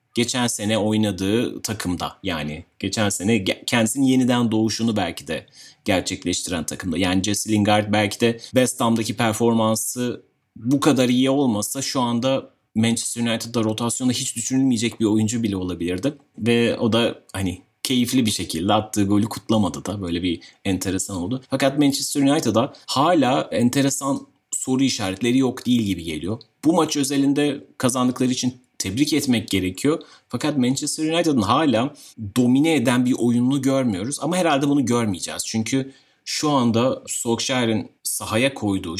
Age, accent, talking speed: 30-49, native, 135 wpm